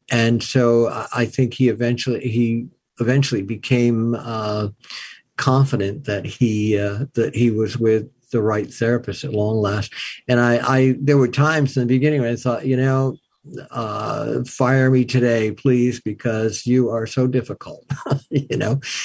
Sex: male